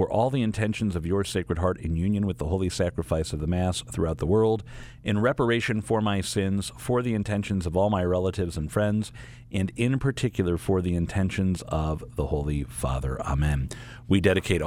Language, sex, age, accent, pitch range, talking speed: English, male, 50-69, American, 80-115 Hz, 190 wpm